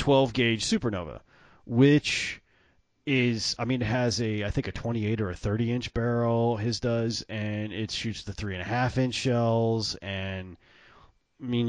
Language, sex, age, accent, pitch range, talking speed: English, male, 30-49, American, 95-125 Hz, 170 wpm